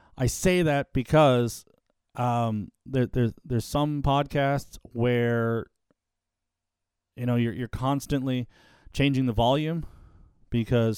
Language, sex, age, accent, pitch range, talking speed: English, male, 40-59, American, 105-130 Hz, 110 wpm